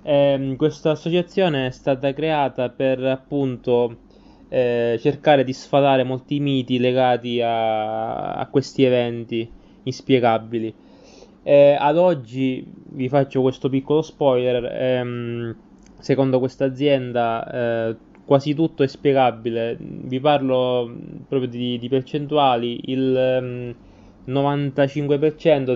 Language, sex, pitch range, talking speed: Italian, male, 120-140 Hz, 105 wpm